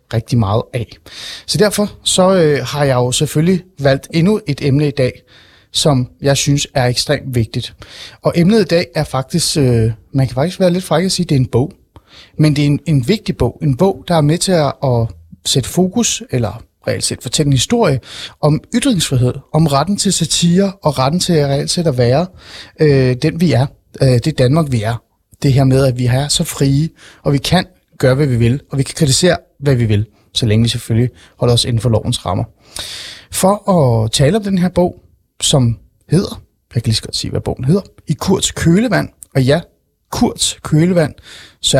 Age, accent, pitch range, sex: 30-49, native, 125-160 Hz, male